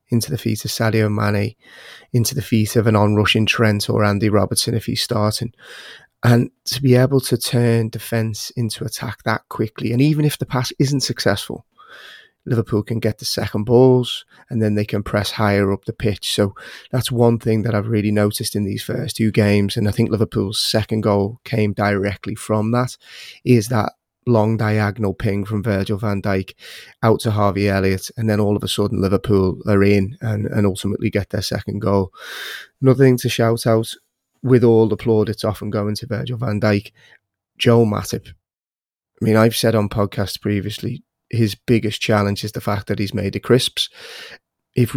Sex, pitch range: male, 105-120 Hz